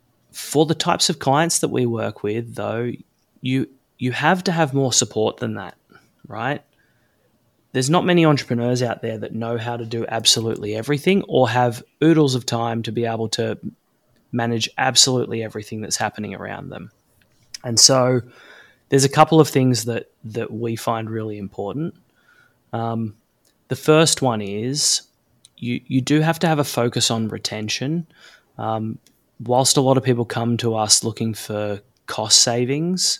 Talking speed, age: 165 wpm, 20-39